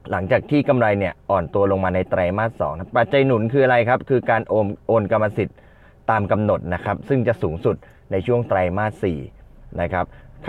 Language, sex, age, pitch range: Thai, male, 20-39, 95-120 Hz